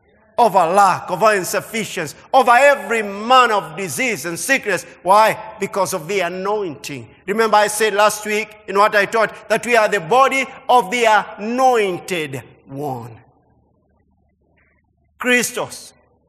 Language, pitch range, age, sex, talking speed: English, 150-245 Hz, 50-69, male, 130 wpm